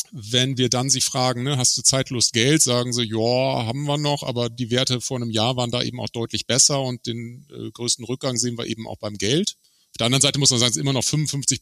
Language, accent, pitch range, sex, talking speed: German, German, 115-135 Hz, male, 265 wpm